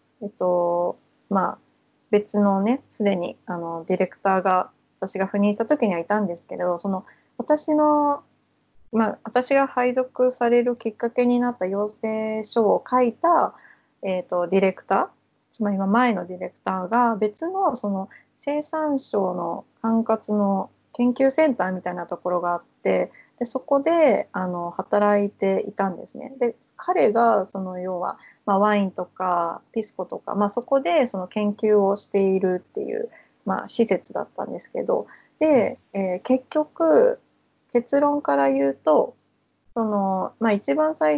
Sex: female